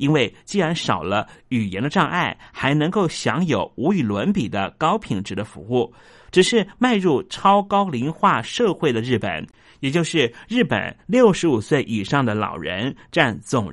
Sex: male